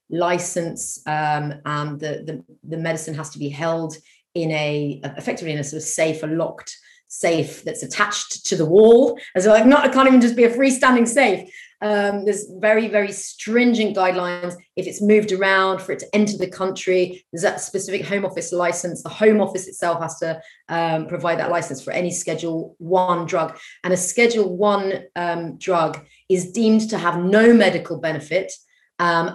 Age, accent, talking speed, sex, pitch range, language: 30-49, British, 185 wpm, female, 165-200 Hz, English